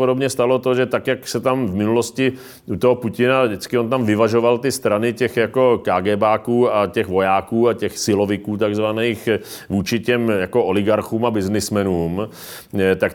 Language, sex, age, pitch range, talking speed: Czech, male, 40-59, 105-120 Hz, 165 wpm